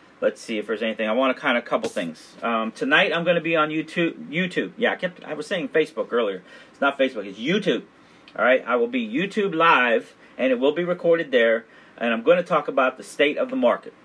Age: 40-59